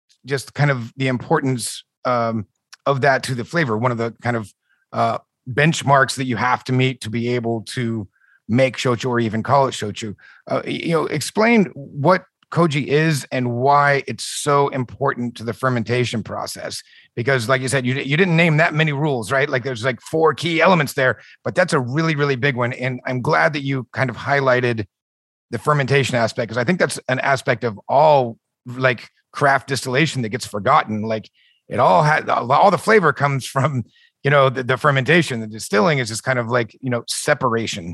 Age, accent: 30-49, American